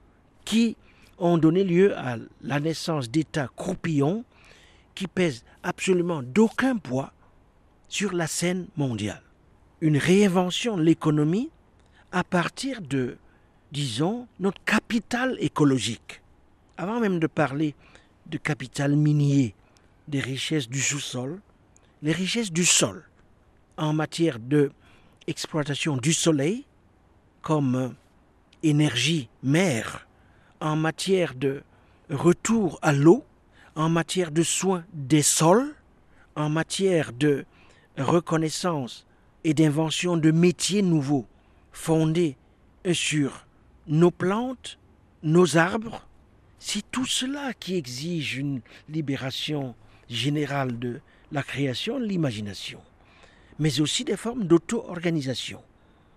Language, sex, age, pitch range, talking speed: French, male, 60-79, 135-180 Hz, 105 wpm